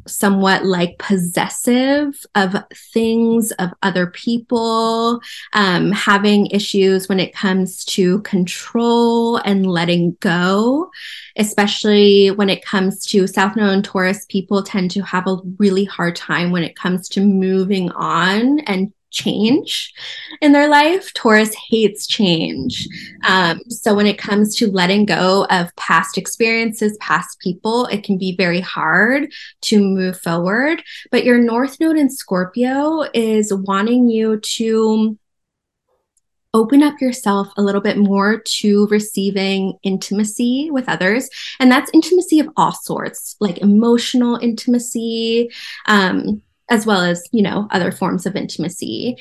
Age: 20-39